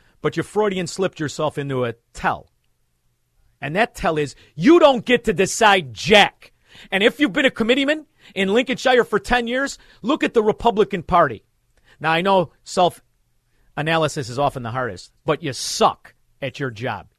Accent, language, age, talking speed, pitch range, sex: American, English, 40-59, 170 wpm, 130-200 Hz, male